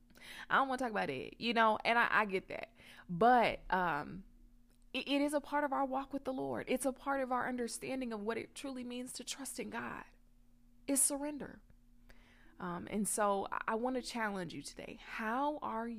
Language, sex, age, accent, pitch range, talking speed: English, female, 20-39, American, 165-250 Hz, 210 wpm